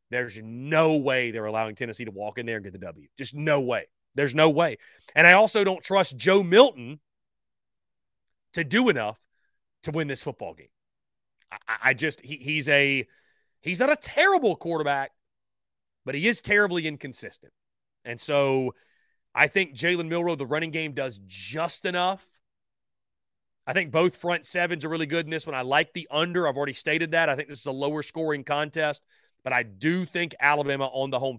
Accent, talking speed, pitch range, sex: American, 185 wpm, 125-170 Hz, male